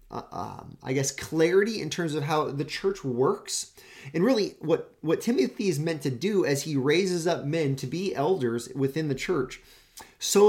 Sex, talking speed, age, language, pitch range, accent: male, 190 wpm, 30-49, English, 125-185 Hz, American